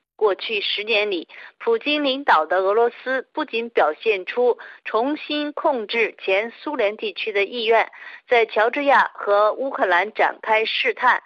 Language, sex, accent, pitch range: Chinese, female, native, 215-310 Hz